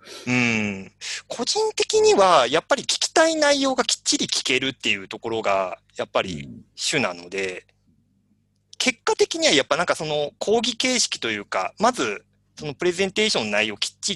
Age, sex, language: 40-59, male, Japanese